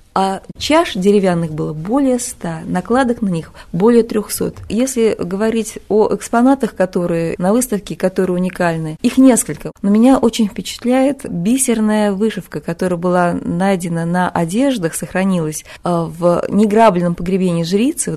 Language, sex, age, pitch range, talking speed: Russian, female, 20-39, 175-225 Hz, 125 wpm